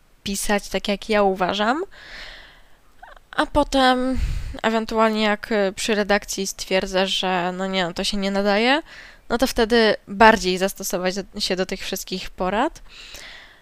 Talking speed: 130 wpm